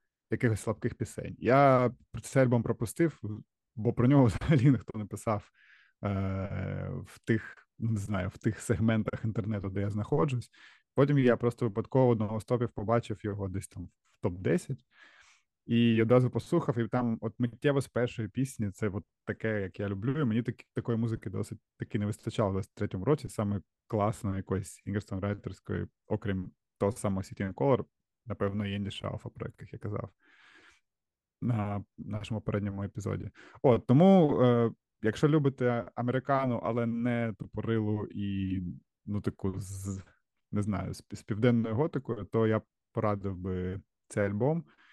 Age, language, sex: 20-39, Ukrainian, male